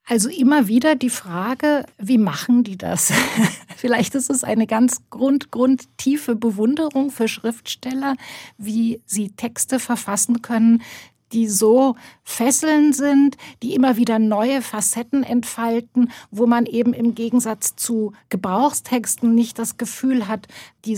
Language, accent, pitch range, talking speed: German, German, 210-250 Hz, 130 wpm